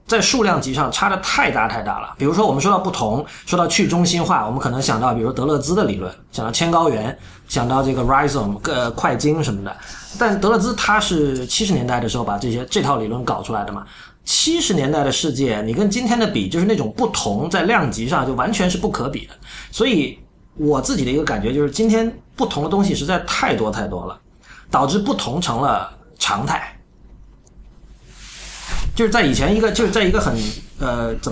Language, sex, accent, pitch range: Chinese, male, native, 120-200 Hz